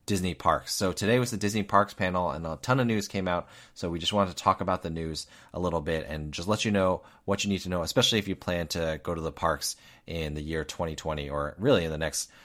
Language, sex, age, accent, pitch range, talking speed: English, male, 30-49, American, 80-100 Hz, 270 wpm